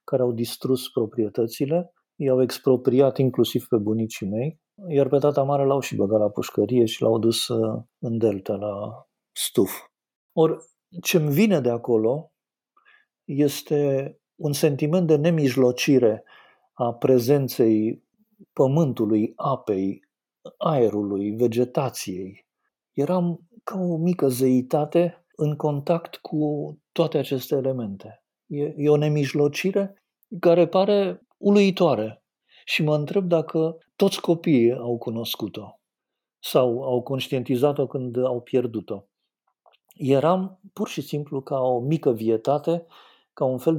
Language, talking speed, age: Romanian, 115 wpm, 50-69